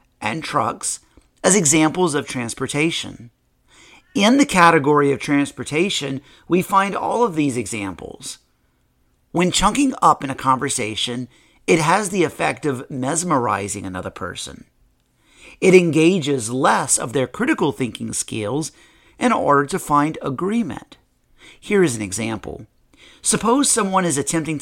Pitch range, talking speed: 125-180 Hz, 125 wpm